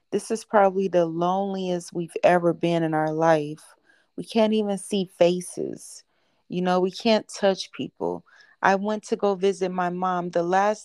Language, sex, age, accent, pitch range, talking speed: English, female, 30-49, American, 170-195 Hz, 170 wpm